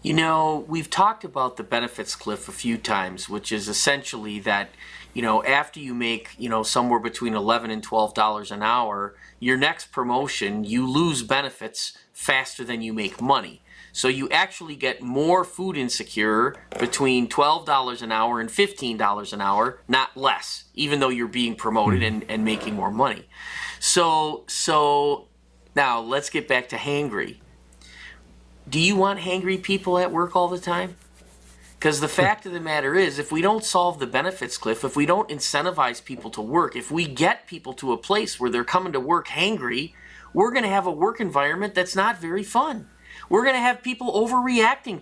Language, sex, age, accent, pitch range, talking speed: English, male, 30-49, American, 115-195 Hz, 185 wpm